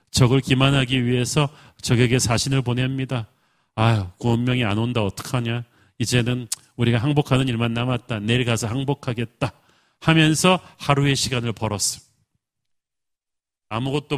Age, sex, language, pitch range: 40-59, male, Korean, 120-145 Hz